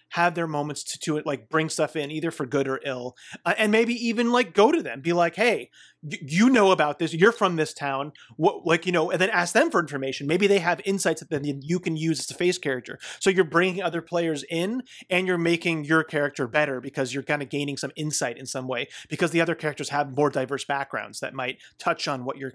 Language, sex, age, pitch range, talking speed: English, male, 30-49, 150-185 Hz, 245 wpm